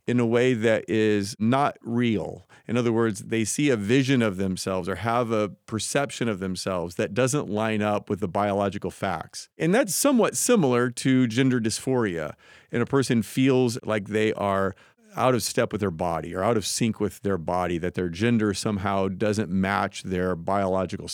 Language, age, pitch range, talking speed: English, 40-59, 100-125 Hz, 185 wpm